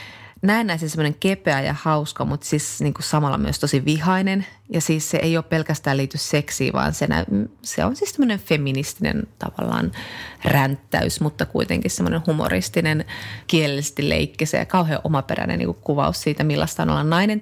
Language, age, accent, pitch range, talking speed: Finnish, 30-49, native, 135-160 Hz, 160 wpm